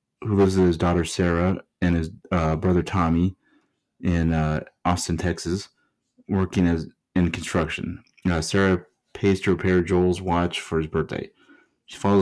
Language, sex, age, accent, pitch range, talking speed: English, male, 30-49, American, 80-90 Hz, 145 wpm